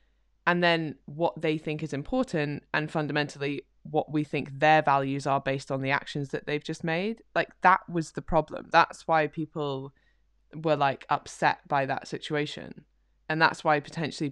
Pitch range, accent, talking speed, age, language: 140-165 Hz, British, 170 wpm, 20-39, English